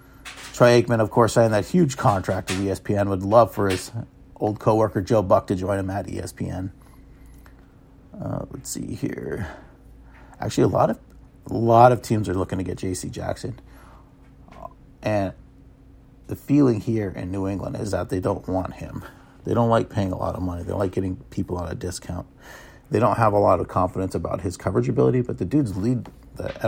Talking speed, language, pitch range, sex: 190 wpm, English, 90-120 Hz, male